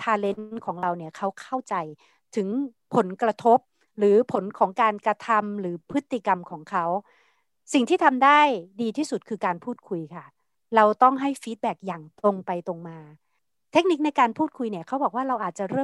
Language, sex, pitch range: Thai, female, 185-250 Hz